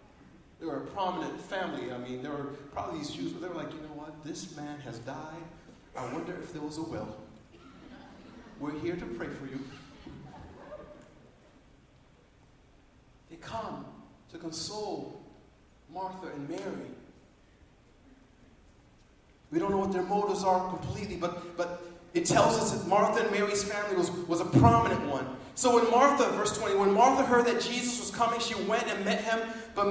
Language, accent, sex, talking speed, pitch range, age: English, American, male, 170 wpm, 160-240 Hz, 40-59